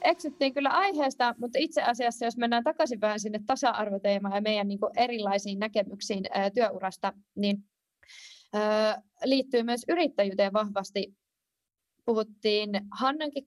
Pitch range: 195-240 Hz